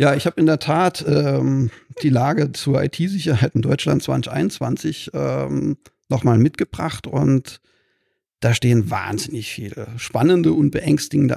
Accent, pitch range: German, 120-145 Hz